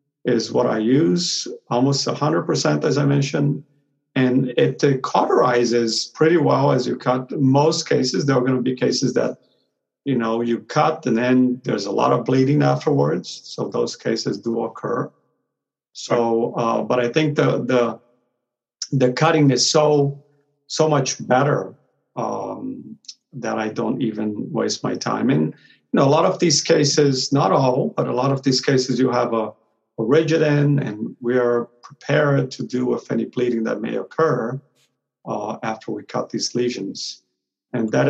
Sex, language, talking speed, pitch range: male, English, 170 wpm, 120-145 Hz